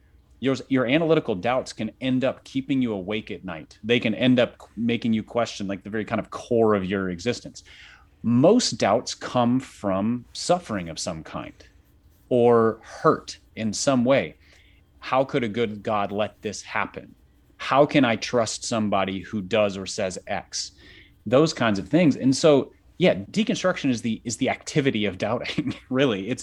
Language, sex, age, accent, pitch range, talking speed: English, male, 30-49, American, 95-120 Hz, 175 wpm